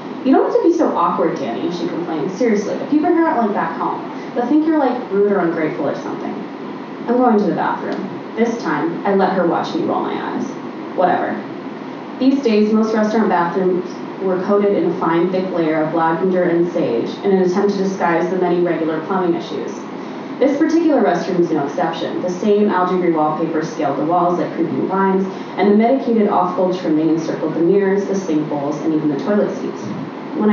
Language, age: English, 20-39